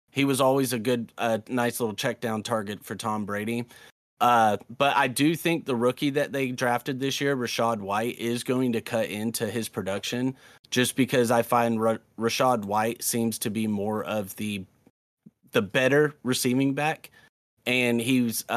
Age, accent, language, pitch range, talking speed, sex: 30-49, American, English, 115-135 Hz, 175 wpm, male